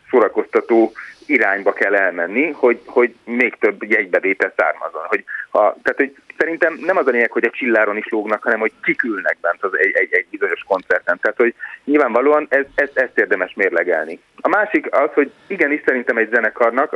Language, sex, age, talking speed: Hungarian, male, 30-49, 175 wpm